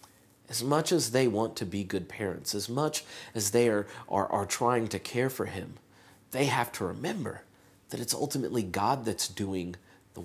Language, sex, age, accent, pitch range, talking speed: English, male, 30-49, American, 110-155 Hz, 185 wpm